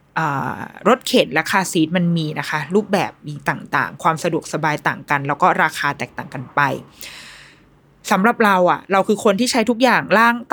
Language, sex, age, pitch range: Thai, female, 20-39, 165-220 Hz